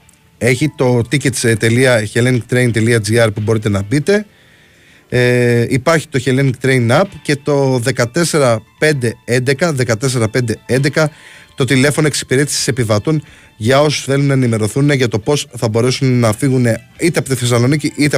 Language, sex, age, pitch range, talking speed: Greek, male, 20-39, 115-140 Hz, 125 wpm